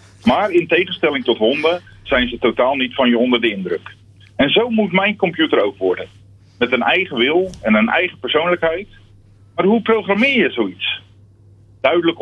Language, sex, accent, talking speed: Dutch, male, Dutch, 170 wpm